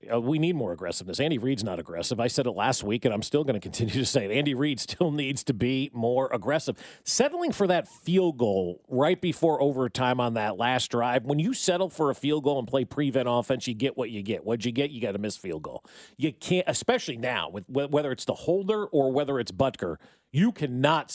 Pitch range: 125-165 Hz